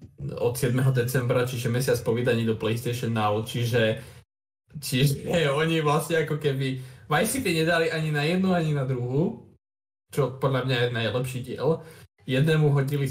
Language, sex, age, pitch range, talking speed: Slovak, male, 20-39, 120-145 Hz, 150 wpm